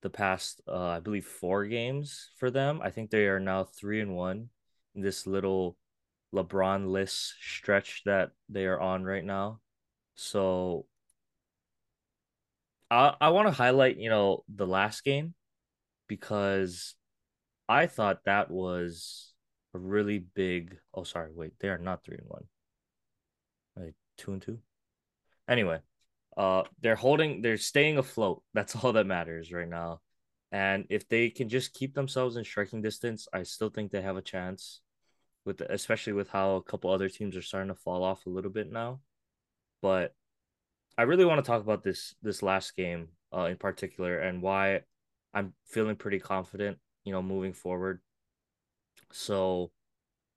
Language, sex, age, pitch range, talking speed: English, male, 20-39, 95-110 Hz, 160 wpm